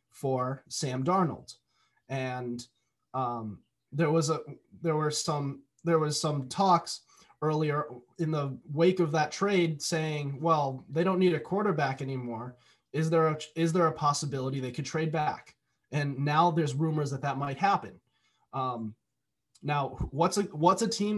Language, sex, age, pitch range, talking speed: English, male, 20-39, 140-175 Hz, 160 wpm